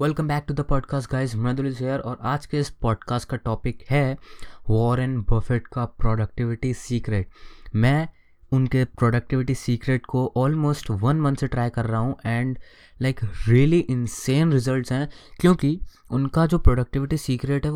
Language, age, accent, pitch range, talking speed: Hindi, 20-39, native, 120-145 Hz, 155 wpm